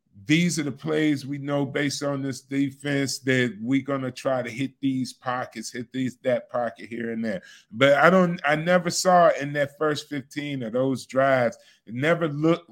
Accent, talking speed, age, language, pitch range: American, 200 wpm, 40-59, English, 125-155 Hz